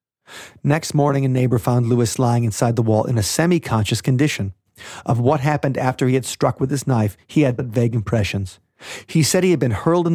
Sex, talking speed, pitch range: male, 215 wpm, 105-135 Hz